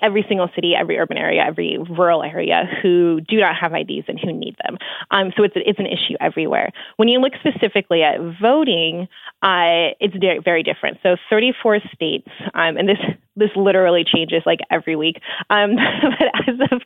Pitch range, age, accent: 165-215 Hz, 20-39, American